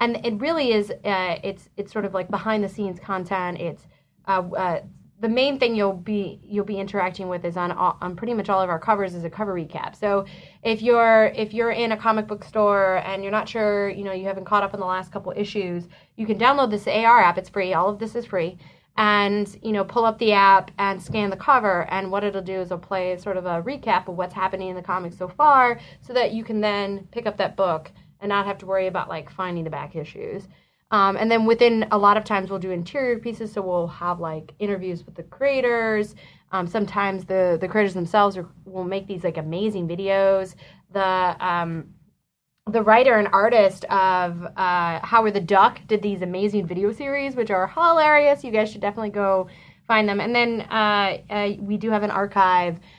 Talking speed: 215 wpm